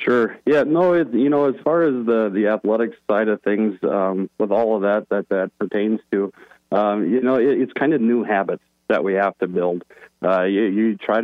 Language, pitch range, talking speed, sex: English, 95-110 Hz, 225 wpm, male